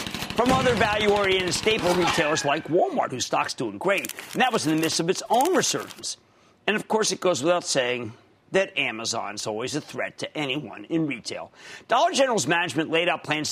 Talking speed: 190 wpm